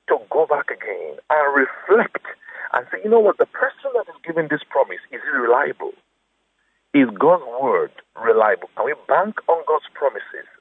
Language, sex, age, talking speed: English, male, 60-79, 175 wpm